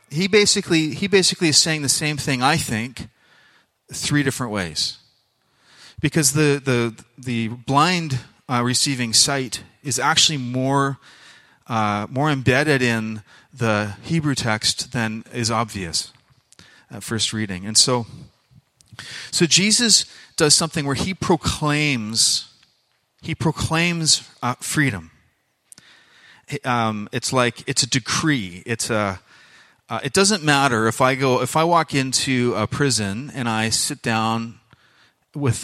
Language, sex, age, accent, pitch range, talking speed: English, male, 30-49, American, 110-150 Hz, 130 wpm